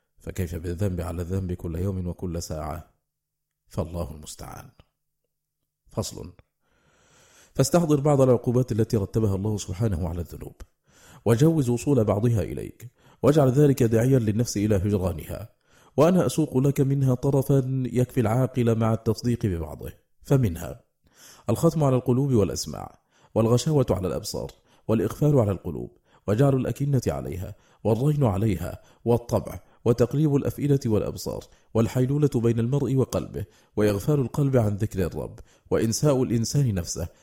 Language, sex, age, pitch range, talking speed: Arabic, male, 40-59, 95-130 Hz, 115 wpm